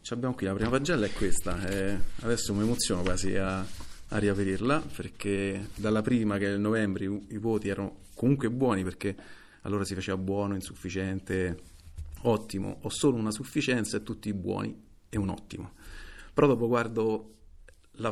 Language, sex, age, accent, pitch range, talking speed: Italian, male, 40-59, native, 95-115 Hz, 165 wpm